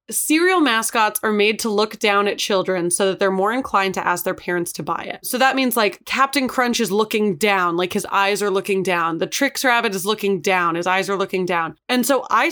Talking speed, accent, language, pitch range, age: 240 wpm, American, English, 200-260 Hz, 20-39